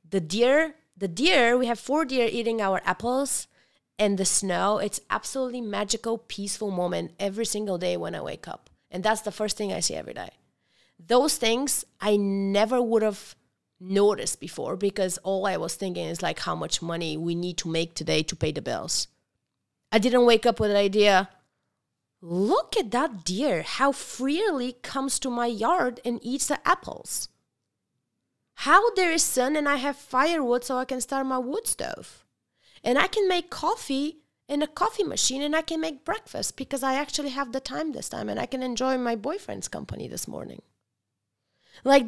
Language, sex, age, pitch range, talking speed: English, female, 30-49, 205-280 Hz, 185 wpm